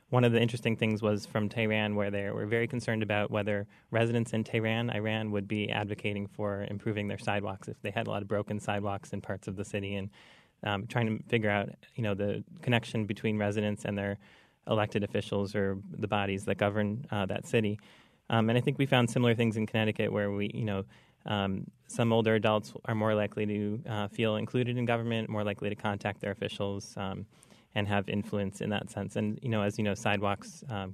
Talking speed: 215 wpm